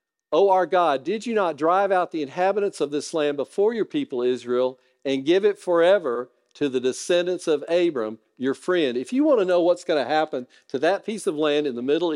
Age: 50-69